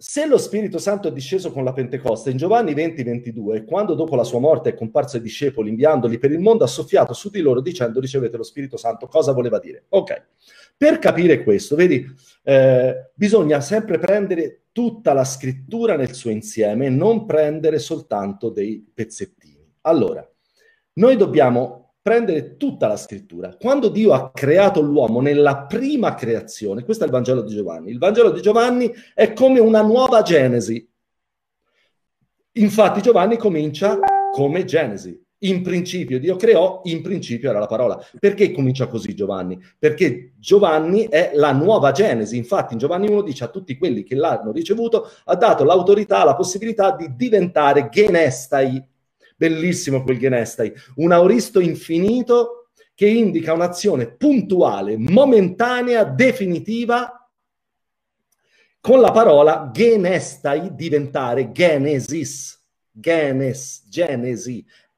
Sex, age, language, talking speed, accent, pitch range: male, 40-59, Italian, 140 wpm, native, 130-220 Hz